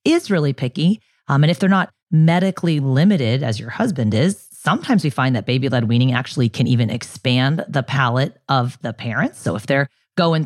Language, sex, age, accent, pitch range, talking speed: English, female, 30-49, American, 125-165 Hz, 195 wpm